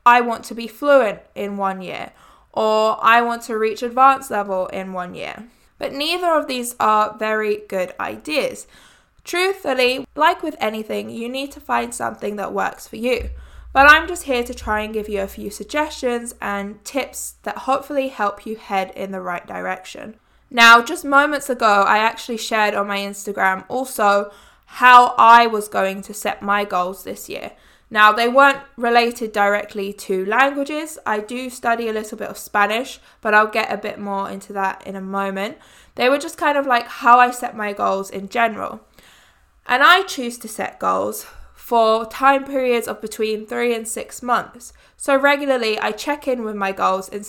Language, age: English, 20-39